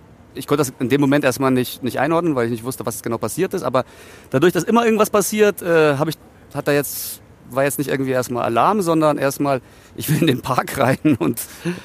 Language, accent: German, German